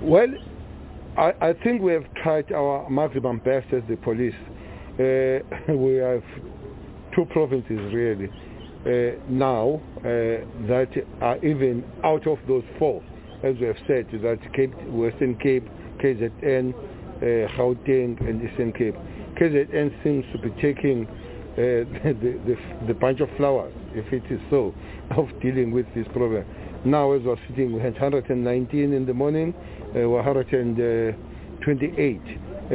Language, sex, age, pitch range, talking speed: English, male, 50-69, 115-140 Hz, 135 wpm